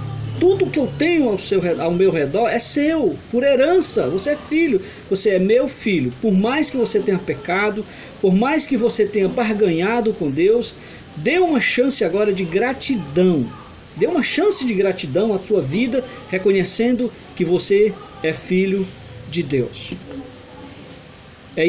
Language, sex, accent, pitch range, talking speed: Portuguese, male, Brazilian, 150-220 Hz, 155 wpm